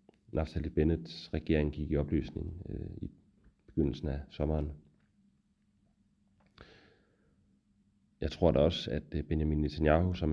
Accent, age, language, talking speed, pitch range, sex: Danish, 30-49, English, 110 wpm, 75-95 Hz, male